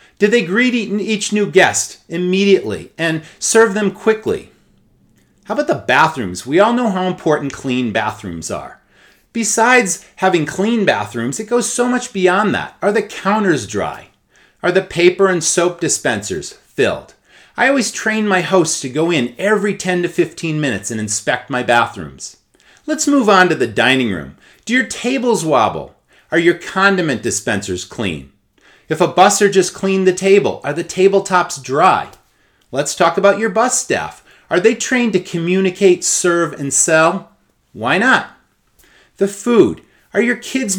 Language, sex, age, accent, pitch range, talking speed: English, male, 30-49, American, 160-210 Hz, 160 wpm